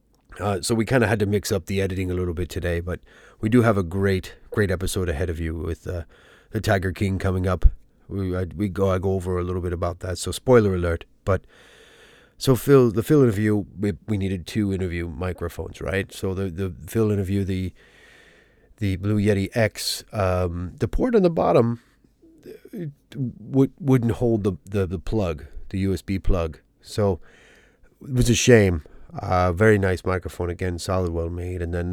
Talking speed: 195 wpm